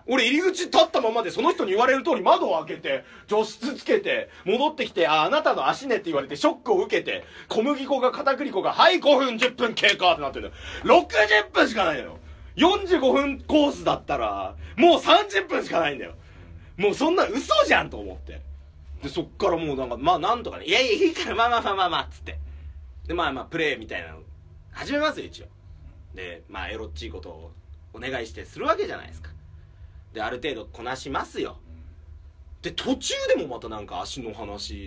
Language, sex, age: Japanese, male, 40-59